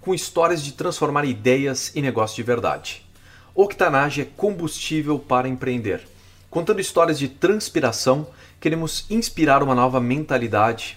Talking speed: 125 wpm